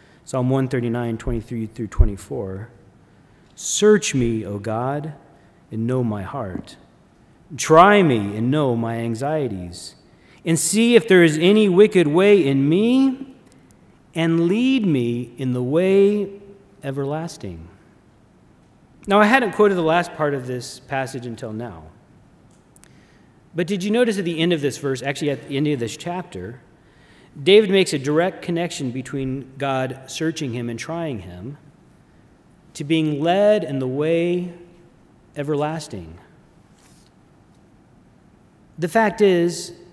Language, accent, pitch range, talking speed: English, American, 125-175 Hz, 130 wpm